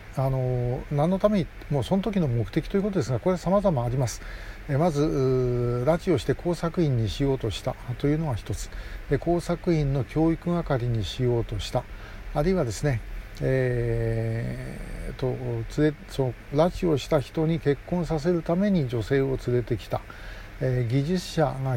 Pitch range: 115-160 Hz